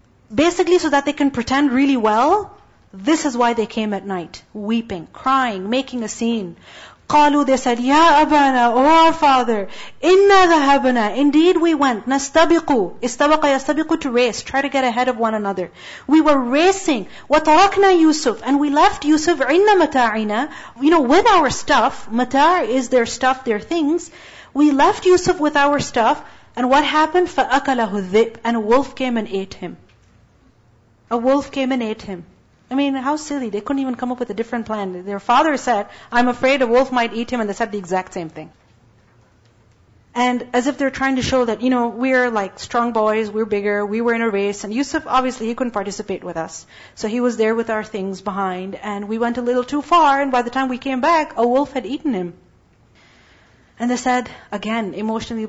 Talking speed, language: 200 wpm, English